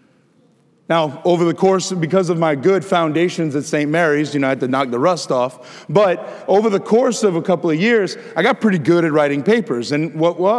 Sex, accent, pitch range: male, American, 165-235 Hz